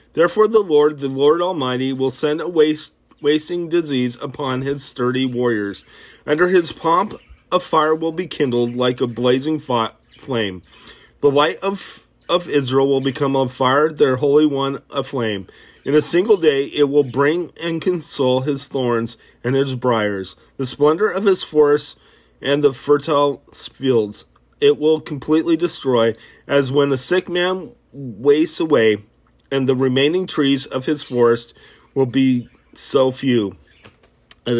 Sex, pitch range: male, 125-155 Hz